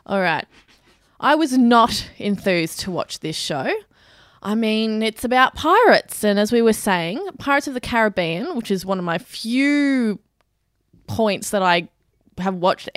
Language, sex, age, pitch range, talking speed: English, female, 20-39, 185-235 Hz, 155 wpm